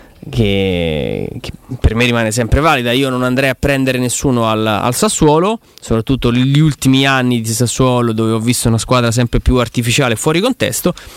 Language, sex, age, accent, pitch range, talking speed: Italian, male, 20-39, native, 120-145 Hz, 165 wpm